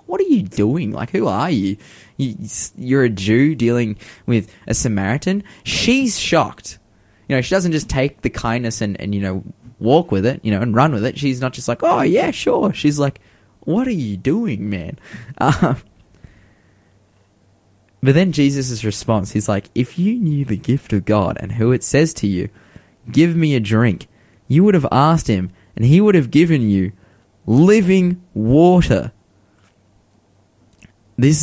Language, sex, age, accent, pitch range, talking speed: English, male, 20-39, Australian, 100-135 Hz, 175 wpm